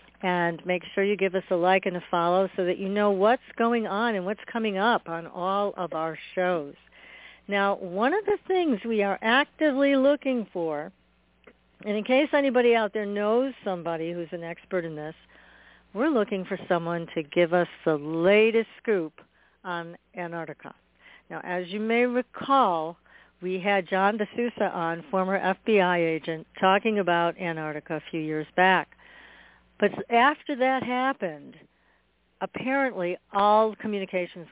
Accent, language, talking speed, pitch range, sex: American, English, 155 wpm, 165-210 Hz, female